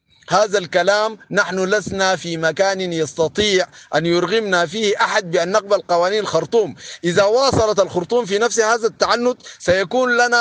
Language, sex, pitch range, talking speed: Arabic, male, 175-220 Hz, 140 wpm